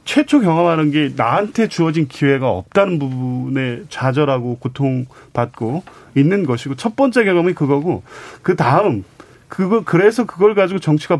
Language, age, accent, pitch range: Korean, 30-49, native, 140-185 Hz